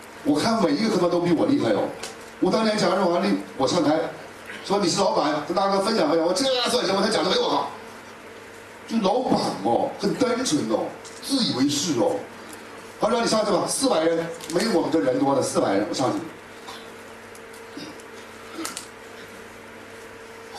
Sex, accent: male, native